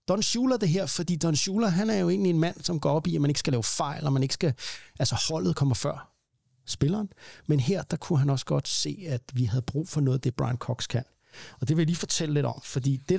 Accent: native